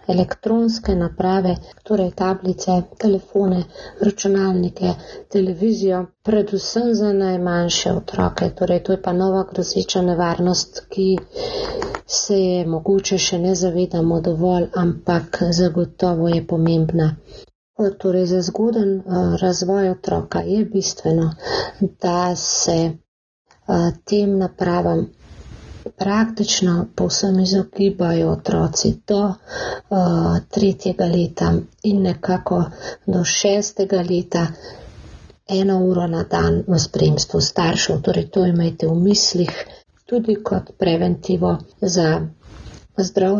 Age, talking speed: 40-59, 100 wpm